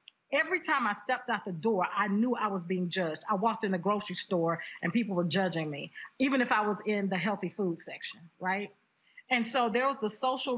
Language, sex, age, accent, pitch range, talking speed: English, female, 40-59, American, 190-270 Hz, 225 wpm